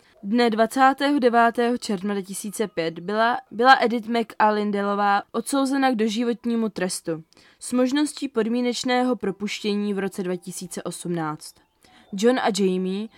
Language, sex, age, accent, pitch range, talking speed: Czech, female, 20-39, native, 195-235 Hz, 100 wpm